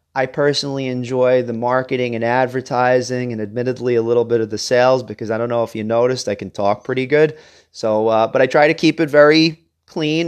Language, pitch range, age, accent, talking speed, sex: English, 120-150 Hz, 30-49, American, 215 wpm, male